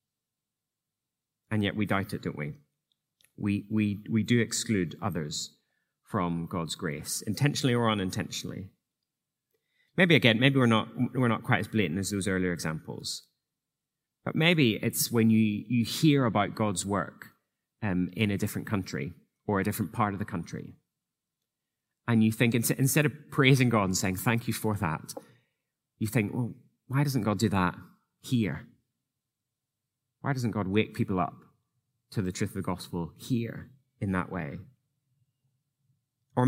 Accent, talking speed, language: British, 155 wpm, English